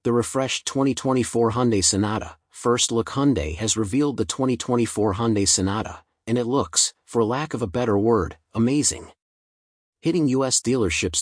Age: 40-59